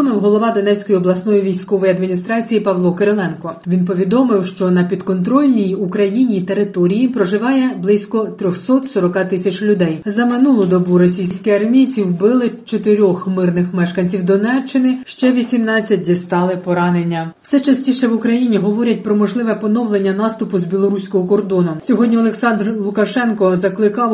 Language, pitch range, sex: Ukrainian, 190-230 Hz, female